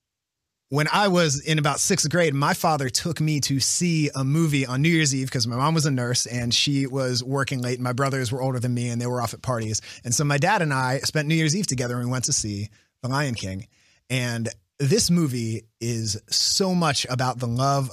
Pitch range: 115-145 Hz